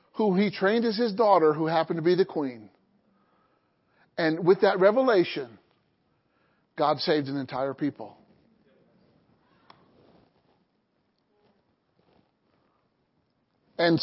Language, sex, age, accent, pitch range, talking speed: English, male, 50-69, American, 170-230 Hz, 95 wpm